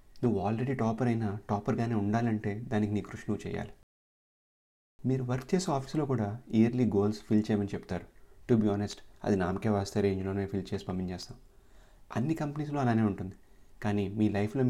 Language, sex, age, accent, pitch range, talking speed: Telugu, male, 30-49, native, 100-110 Hz, 160 wpm